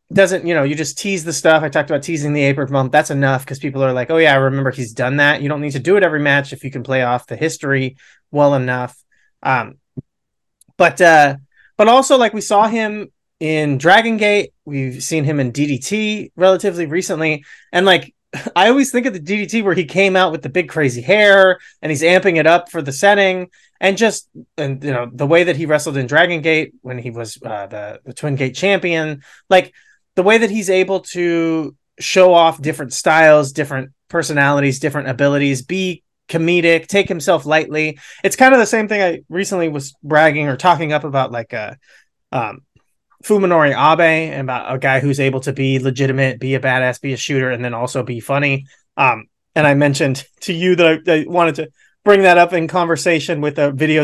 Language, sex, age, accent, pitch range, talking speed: English, male, 30-49, American, 135-180 Hz, 210 wpm